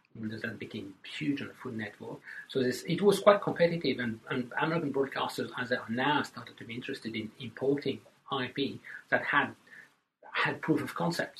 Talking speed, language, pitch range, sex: 180 wpm, English, 110-130 Hz, male